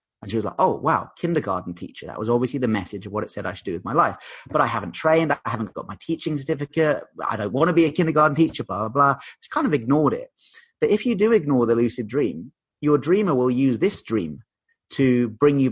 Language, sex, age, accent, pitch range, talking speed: English, male, 30-49, British, 110-150 Hz, 250 wpm